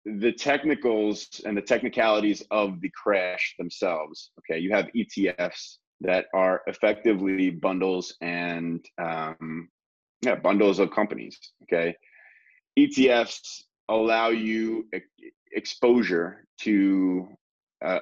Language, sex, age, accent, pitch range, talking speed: English, male, 30-49, American, 85-110 Hz, 105 wpm